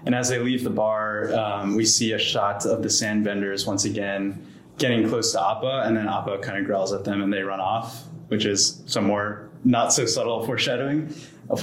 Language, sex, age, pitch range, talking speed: English, male, 20-39, 105-120 Hz, 210 wpm